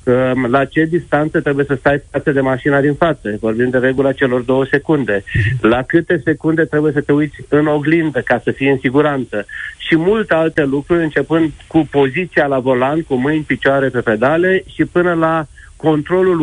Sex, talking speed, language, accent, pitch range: male, 180 wpm, Romanian, native, 135-165 Hz